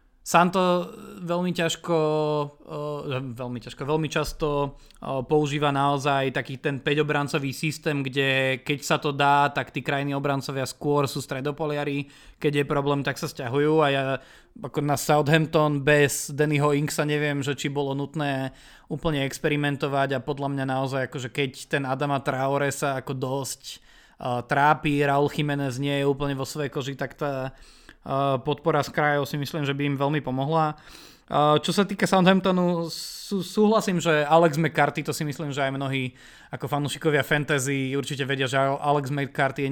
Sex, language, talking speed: male, Slovak, 155 wpm